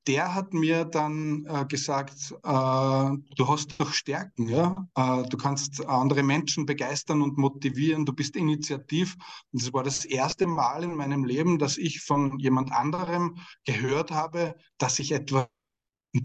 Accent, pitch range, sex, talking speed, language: Austrian, 135-155 Hz, male, 160 wpm, German